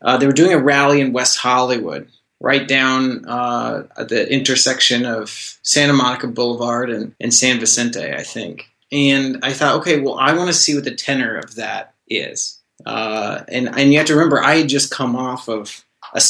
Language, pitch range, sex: English, 130-150 Hz, male